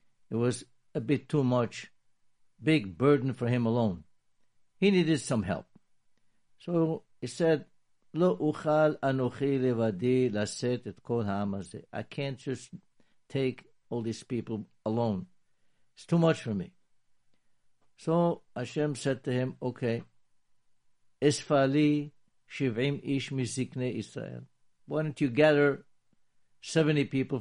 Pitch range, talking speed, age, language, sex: 120-145 Hz, 95 wpm, 60-79, English, male